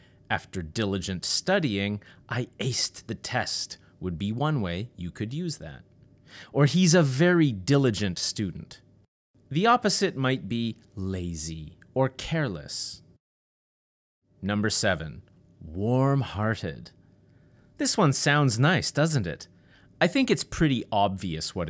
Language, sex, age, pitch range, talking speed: English, male, 30-49, 100-155 Hz, 120 wpm